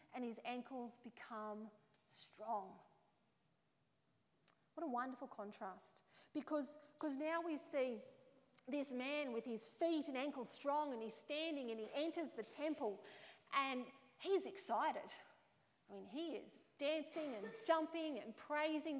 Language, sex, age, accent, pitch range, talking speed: English, female, 30-49, Australian, 240-305 Hz, 130 wpm